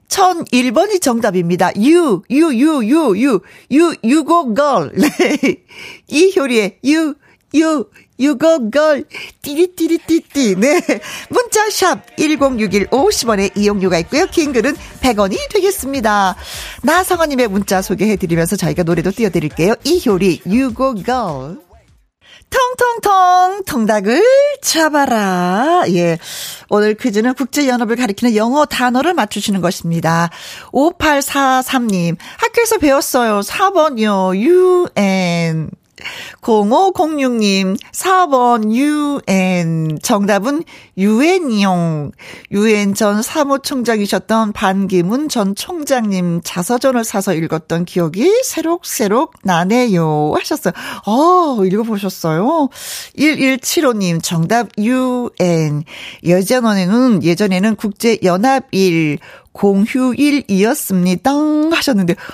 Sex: female